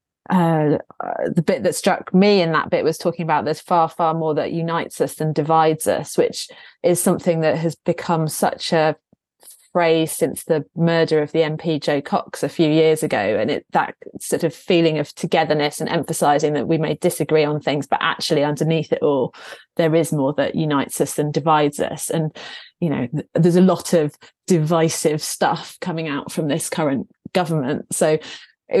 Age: 30-49